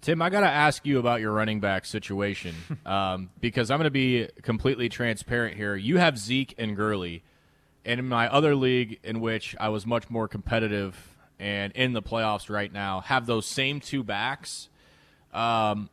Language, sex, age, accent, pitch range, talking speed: English, male, 30-49, American, 105-125 Hz, 175 wpm